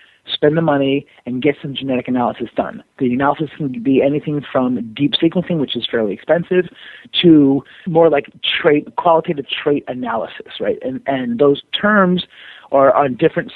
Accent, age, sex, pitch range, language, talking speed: American, 30-49, male, 125-155 Hz, English, 160 wpm